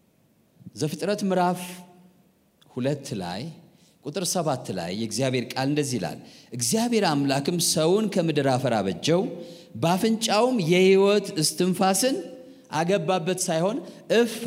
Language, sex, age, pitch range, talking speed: Amharic, male, 40-59, 150-210 Hz, 90 wpm